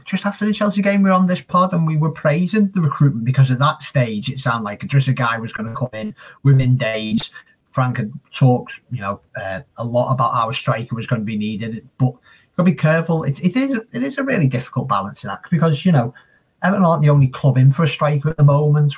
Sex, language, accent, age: male, English, British, 30-49